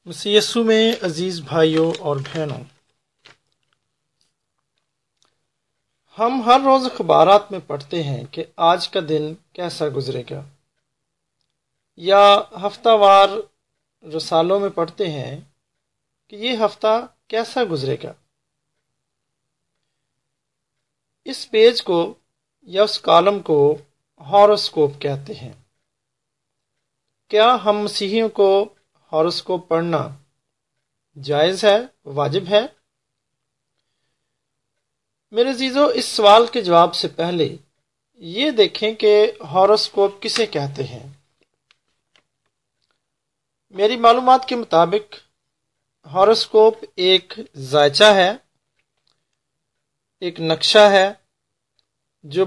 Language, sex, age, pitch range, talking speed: English, male, 40-59, 145-210 Hz, 85 wpm